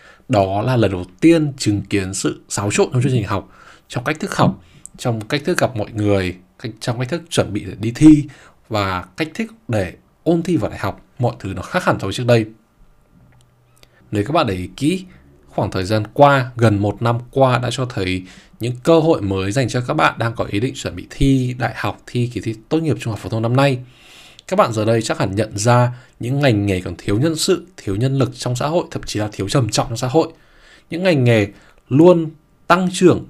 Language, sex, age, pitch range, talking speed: Vietnamese, male, 20-39, 105-135 Hz, 235 wpm